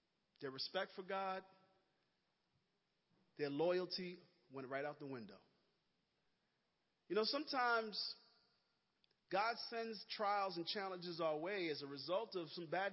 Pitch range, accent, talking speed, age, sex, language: 170-235 Hz, American, 125 wpm, 40-59, male, English